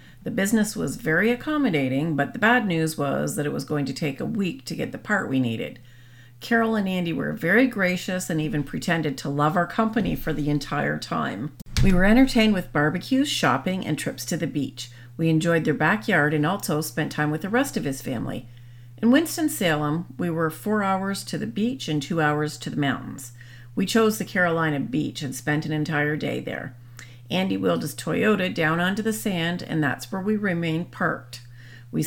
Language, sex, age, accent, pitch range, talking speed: English, female, 40-59, American, 140-200 Hz, 200 wpm